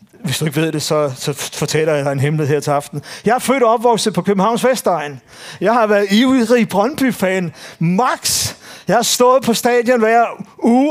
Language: English